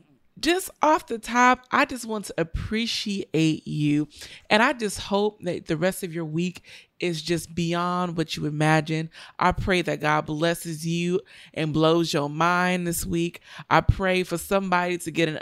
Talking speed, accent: 175 wpm, American